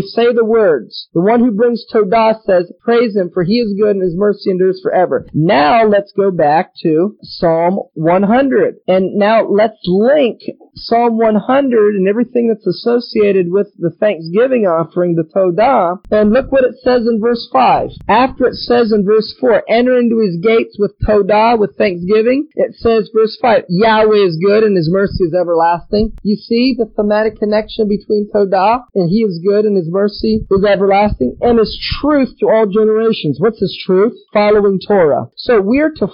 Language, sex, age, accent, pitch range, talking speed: English, male, 40-59, American, 190-230 Hz, 180 wpm